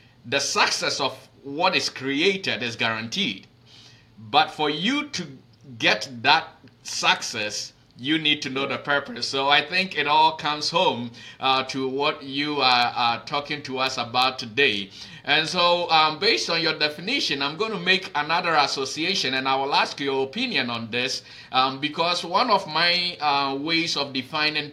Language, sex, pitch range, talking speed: English, male, 120-155 Hz, 165 wpm